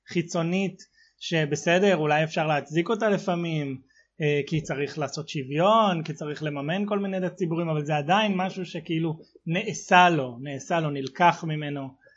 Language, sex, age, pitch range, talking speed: Hebrew, male, 20-39, 155-185 Hz, 145 wpm